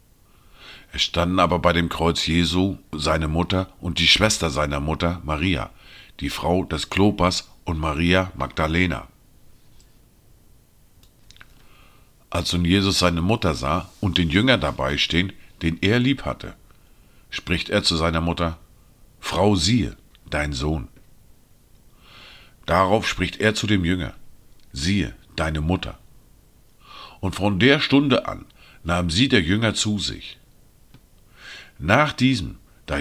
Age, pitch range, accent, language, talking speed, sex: 50-69, 85-110 Hz, German, German, 125 wpm, male